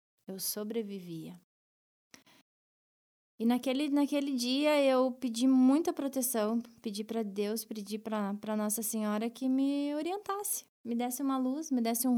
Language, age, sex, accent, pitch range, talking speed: Portuguese, 20-39, female, Brazilian, 210-265 Hz, 135 wpm